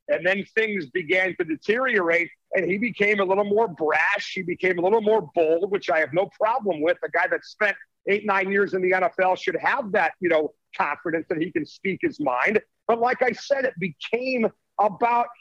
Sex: male